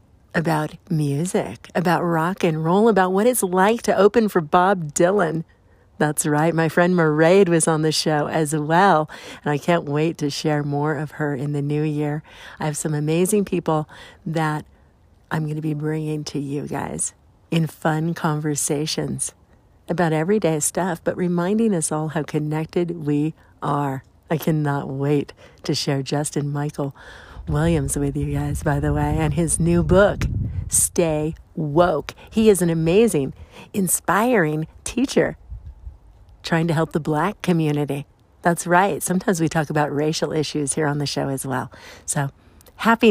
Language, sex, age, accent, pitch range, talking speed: English, female, 60-79, American, 145-175 Hz, 160 wpm